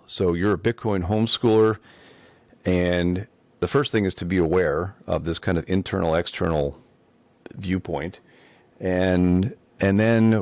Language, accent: English, American